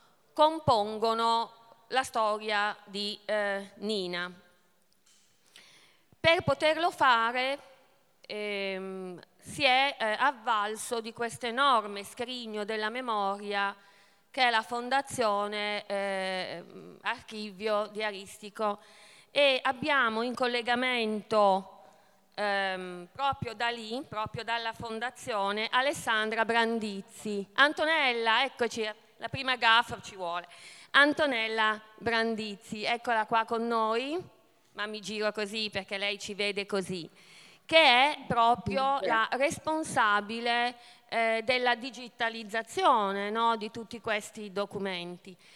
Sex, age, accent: female, 30-49, native